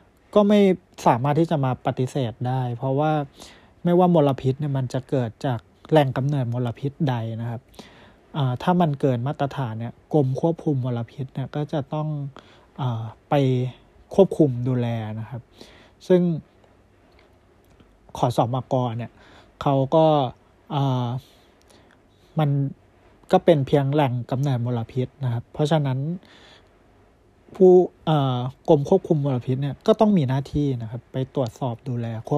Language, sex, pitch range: Thai, male, 120-155 Hz